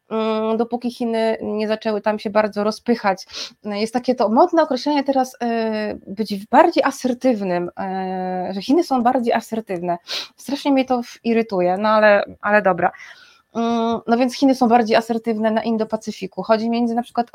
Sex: female